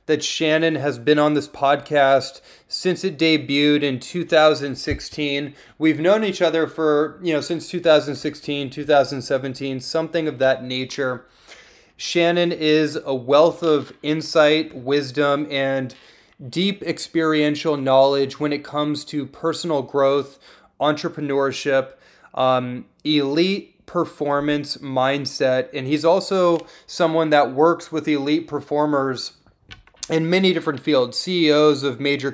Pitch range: 135-155 Hz